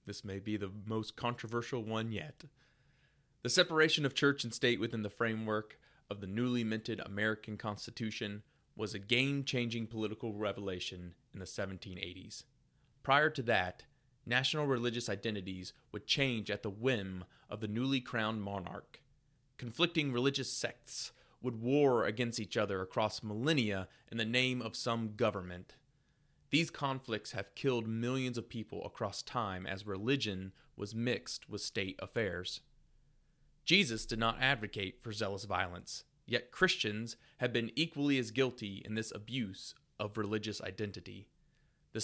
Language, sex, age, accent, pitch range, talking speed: English, male, 30-49, American, 105-135 Hz, 145 wpm